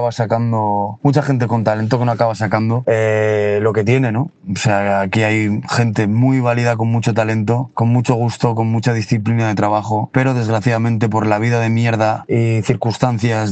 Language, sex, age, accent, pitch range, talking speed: Spanish, male, 20-39, Spanish, 105-120 Hz, 180 wpm